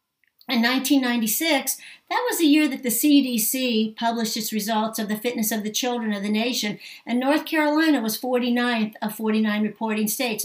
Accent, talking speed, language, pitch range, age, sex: American, 170 wpm, English, 210-245 Hz, 60-79, female